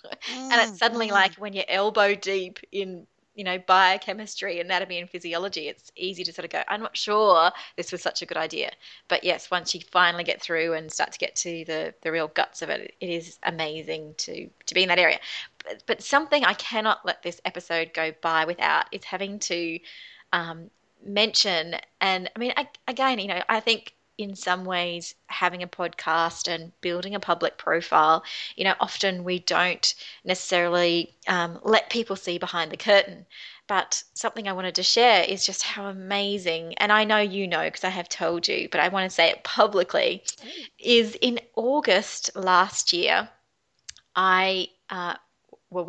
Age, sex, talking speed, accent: 20-39, female, 185 wpm, Australian